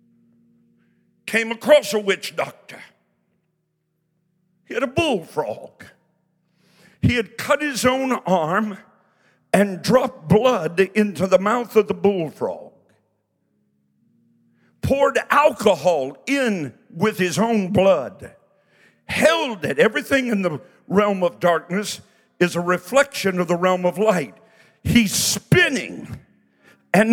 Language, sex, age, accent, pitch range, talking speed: English, male, 50-69, American, 195-285 Hz, 110 wpm